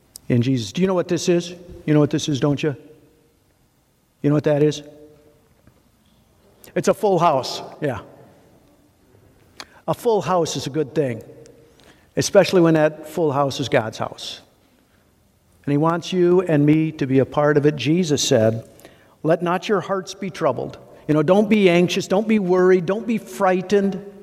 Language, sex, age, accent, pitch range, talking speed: English, male, 50-69, American, 140-175 Hz, 175 wpm